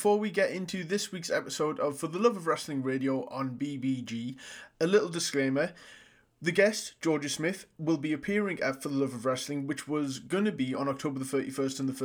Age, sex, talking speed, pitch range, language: 20-39, male, 210 wpm, 135-155 Hz, English